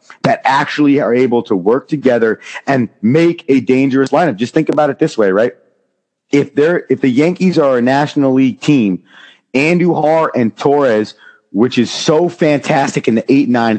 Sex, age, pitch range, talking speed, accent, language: male, 30-49, 120-160 Hz, 170 wpm, American, English